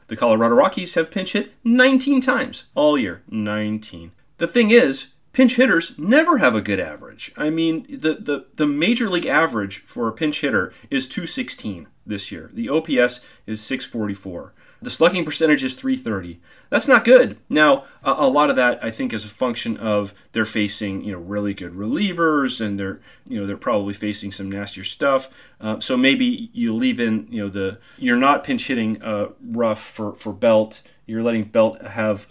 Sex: male